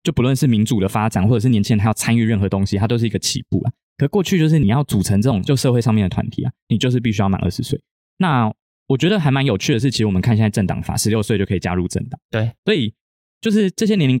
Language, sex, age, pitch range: Chinese, male, 20-39, 105-135 Hz